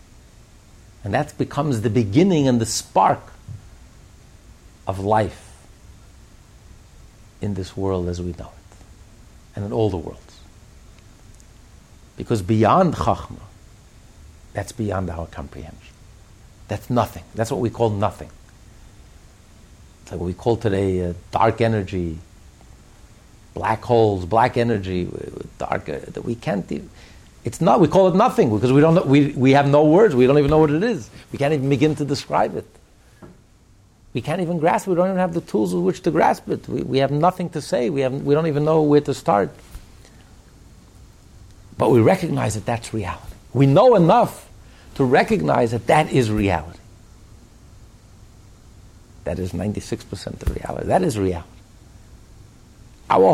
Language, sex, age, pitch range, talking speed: English, male, 60-79, 95-135 Hz, 155 wpm